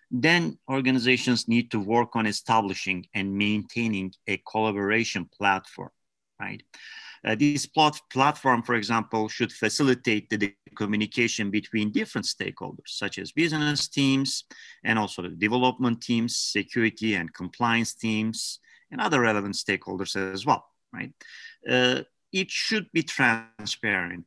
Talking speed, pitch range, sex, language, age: 120 wpm, 105-125 Hz, male, English, 40-59